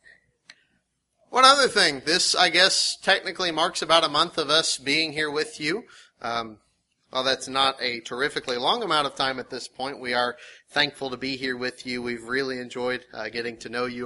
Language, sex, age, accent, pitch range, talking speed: English, male, 30-49, American, 125-175 Hz, 195 wpm